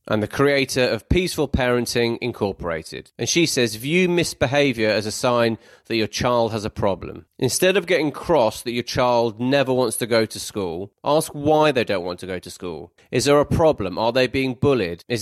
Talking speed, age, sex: 205 wpm, 30-49, male